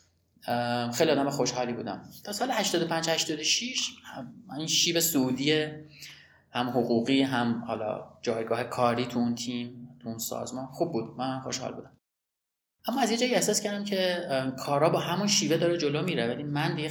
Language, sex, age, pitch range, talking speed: Persian, male, 30-49, 120-145 Hz, 150 wpm